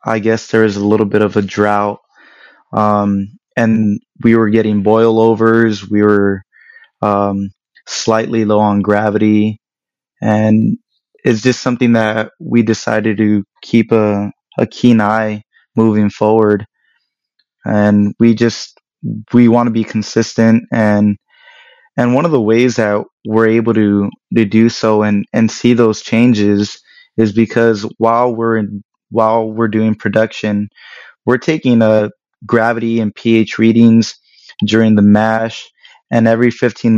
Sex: male